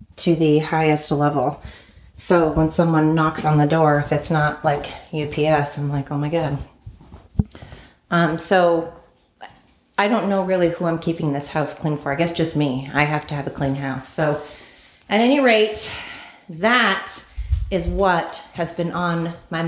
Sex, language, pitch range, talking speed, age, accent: female, English, 155-180 Hz, 170 wpm, 30-49, American